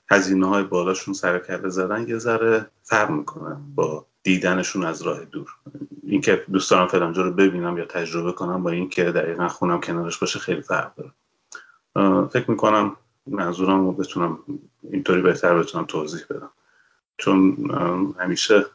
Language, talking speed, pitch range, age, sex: Persian, 145 wpm, 90-115 Hz, 30-49, male